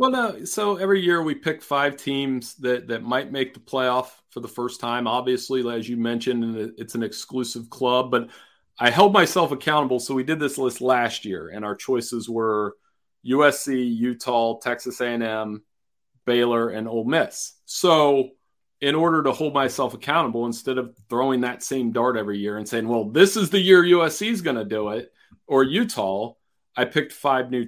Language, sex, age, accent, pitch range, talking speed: English, male, 40-59, American, 115-145 Hz, 185 wpm